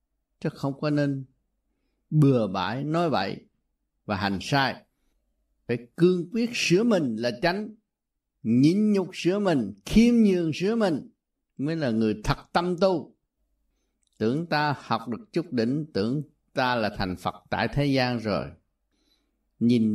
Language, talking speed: Vietnamese, 145 wpm